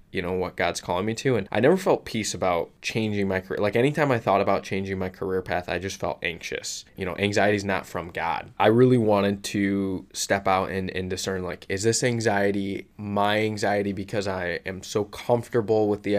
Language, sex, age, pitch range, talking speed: English, male, 20-39, 95-105 Hz, 215 wpm